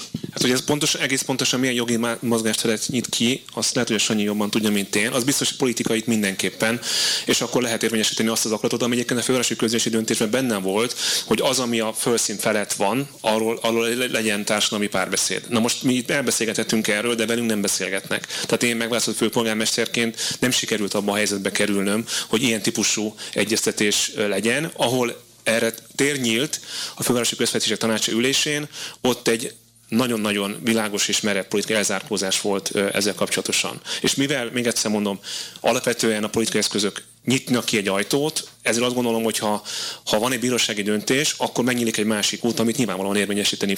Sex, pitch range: male, 105-125 Hz